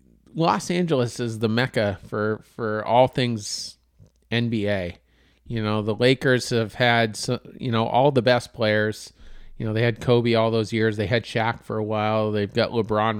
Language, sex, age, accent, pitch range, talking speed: English, male, 40-59, American, 115-145 Hz, 180 wpm